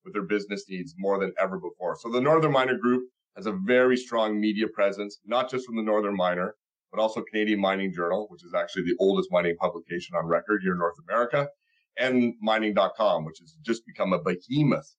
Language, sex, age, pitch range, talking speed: English, male, 40-59, 100-130 Hz, 205 wpm